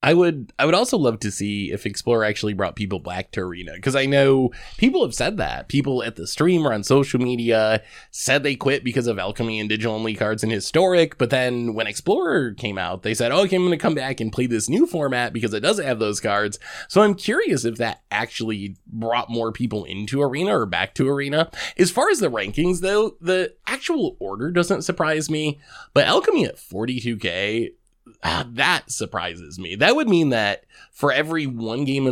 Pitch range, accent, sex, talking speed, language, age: 110-150 Hz, American, male, 210 wpm, English, 20-39